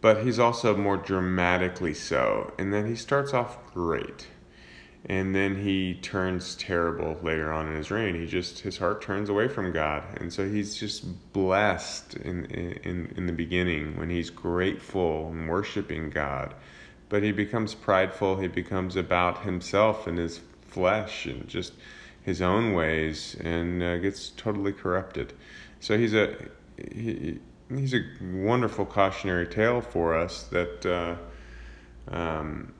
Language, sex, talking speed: English, male, 150 wpm